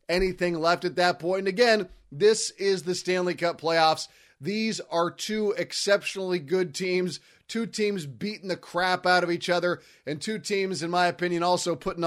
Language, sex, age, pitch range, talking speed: English, male, 30-49, 170-200 Hz, 180 wpm